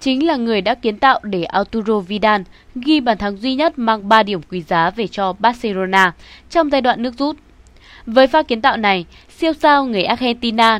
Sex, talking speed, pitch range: female, 200 wpm, 190-260 Hz